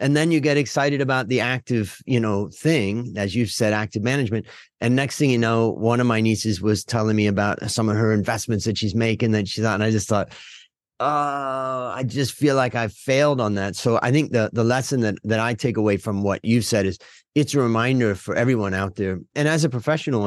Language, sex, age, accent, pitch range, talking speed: English, male, 40-59, American, 100-125 Hz, 235 wpm